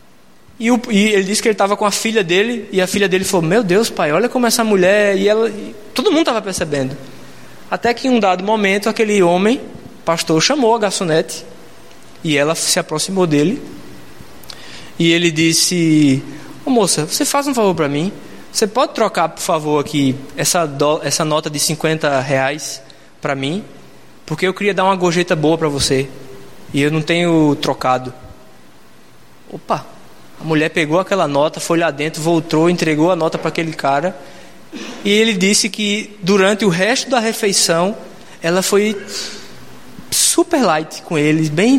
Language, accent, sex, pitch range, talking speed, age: Portuguese, Brazilian, male, 155-210 Hz, 175 wpm, 20-39